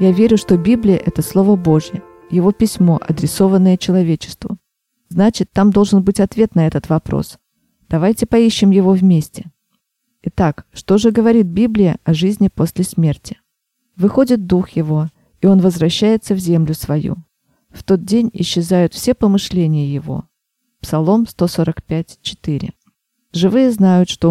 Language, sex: Russian, female